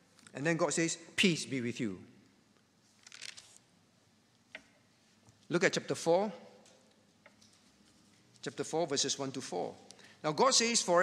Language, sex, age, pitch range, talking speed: English, male, 50-69, 160-230 Hz, 120 wpm